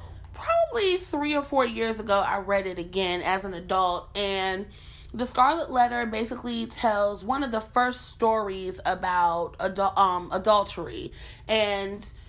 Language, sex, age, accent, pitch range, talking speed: English, female, 30-49, American, 190-240 Hz, 140 wpm